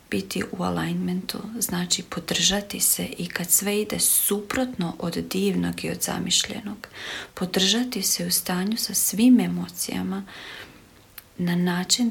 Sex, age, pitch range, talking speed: female, 40-59, 175-215 Hz, 125 wpm